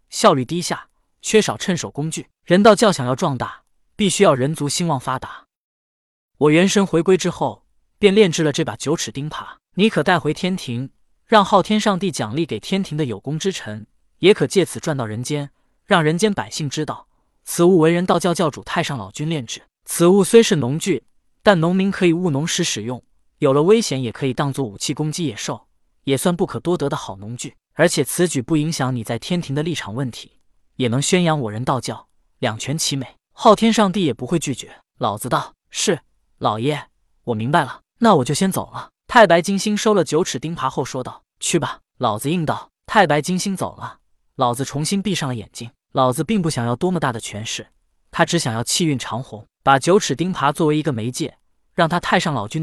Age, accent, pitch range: 20-39, native, 130-180 Hz